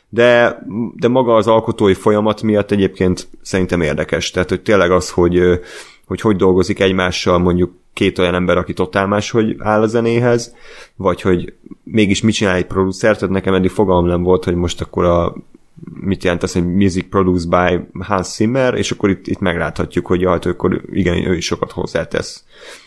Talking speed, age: 175 wpm, 30-49